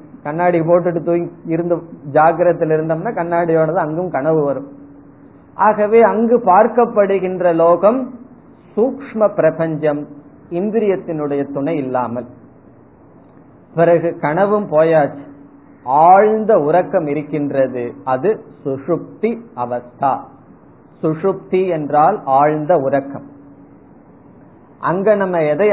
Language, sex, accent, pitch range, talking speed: Tamil, male, native, 145-185 Hz, 80 wpm